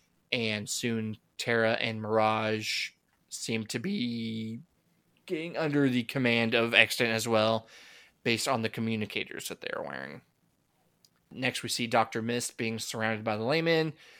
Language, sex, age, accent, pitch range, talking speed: English, male, 20-39, American, 115-135 Hz, 140 wpm